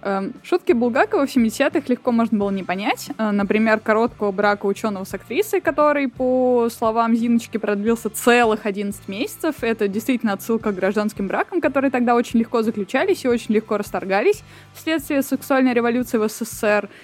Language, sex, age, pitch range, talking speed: Russian, female, 20-39, 205-255 Hz, 150 wpm